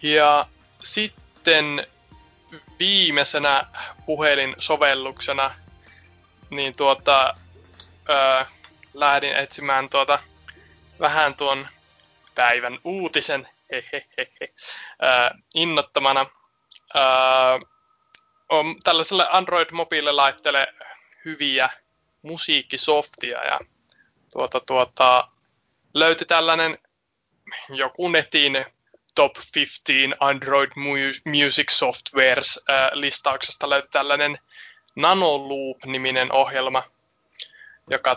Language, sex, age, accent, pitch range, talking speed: Finnish, male, 20-39, native, 130-150 Hz, 65 wpm